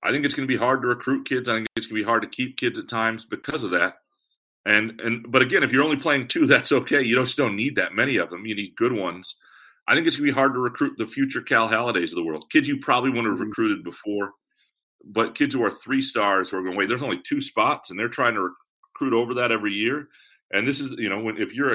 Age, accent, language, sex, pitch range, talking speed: 40-59, American, English, male, 105-140 Hz, 275 wpm